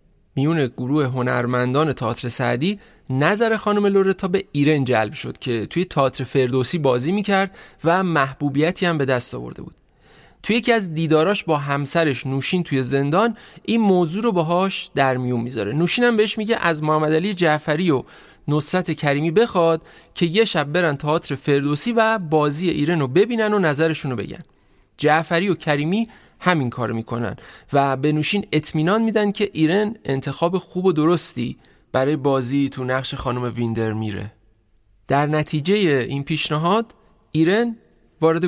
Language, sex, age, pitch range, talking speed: Persian, male, 30-49, 135-190 Hz, 150 wpm